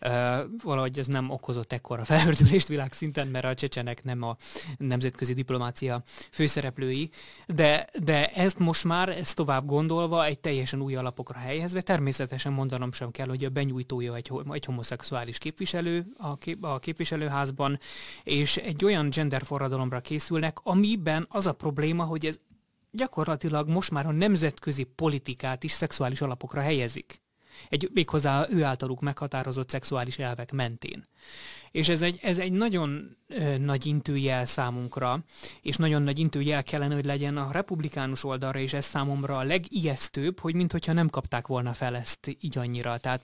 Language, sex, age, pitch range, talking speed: Hungarian, male, 20-39, 130-160 Hz, 145 wpm